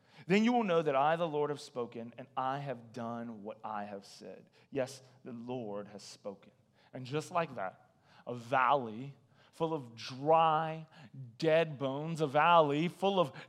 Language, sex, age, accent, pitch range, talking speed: English, male, 30-49, American, 135-200 Hz, 170 wpm